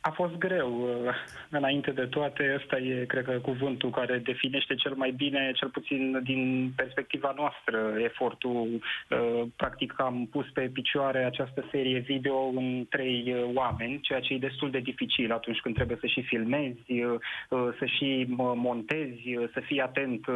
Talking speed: 150 wpm